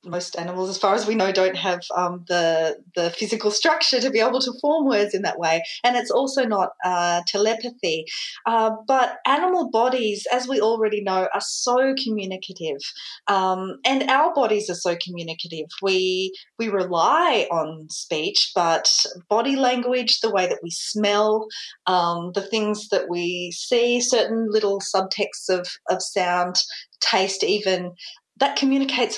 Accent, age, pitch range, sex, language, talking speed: Australian, 30-49, 175-225 Hz, female, English, 155 wpm